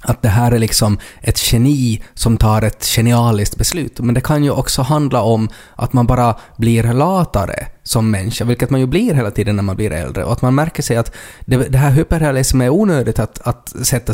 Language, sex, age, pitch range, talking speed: Swedish, male, 20-39, 110-130 Hz, 210 wpm